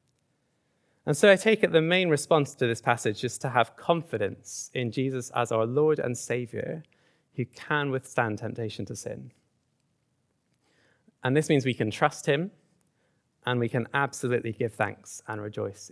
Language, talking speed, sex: English, 160 wpm, male